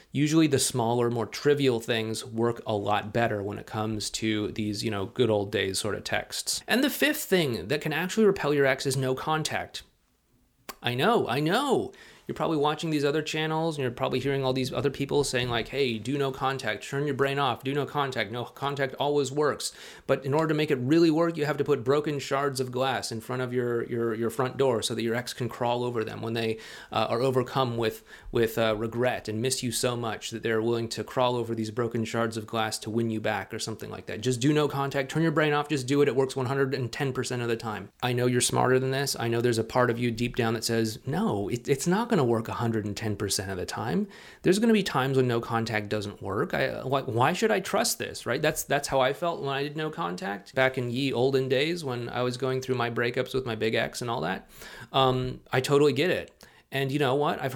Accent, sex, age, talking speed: American, male, 30-49, 250 wpm